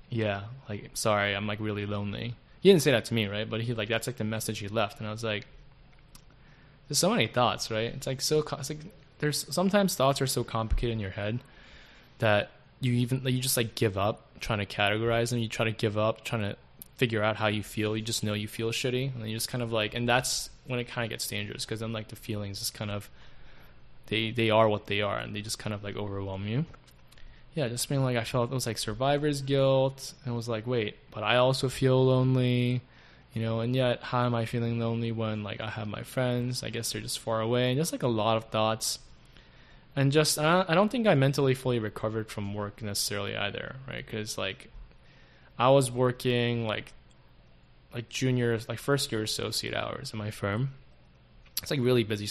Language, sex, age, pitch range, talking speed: English, male, 10-29, 105-130 Hz, 225 wpm